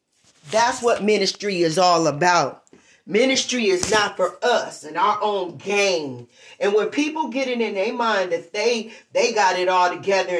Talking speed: 175 wpm